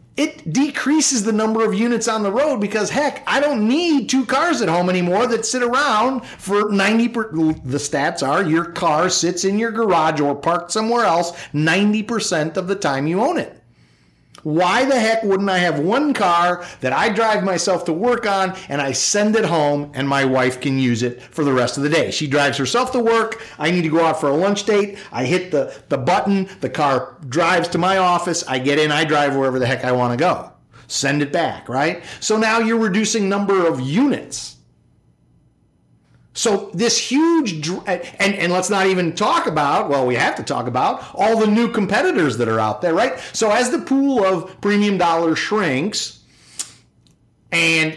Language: English